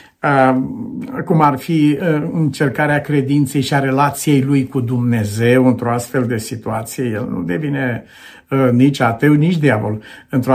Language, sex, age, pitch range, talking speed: Romanian, male, 50-69, 130-185 Hz, 130 wpm